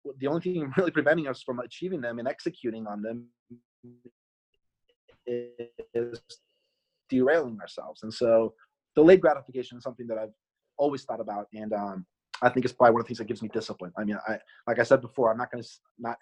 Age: 30-49